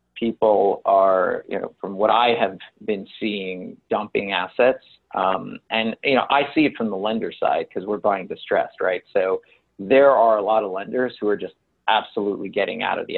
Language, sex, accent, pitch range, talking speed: English, male, American, 100-120 Hz, 195 wpm